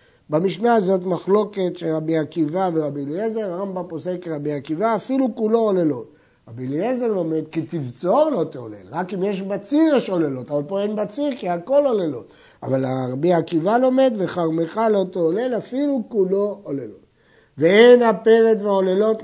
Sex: male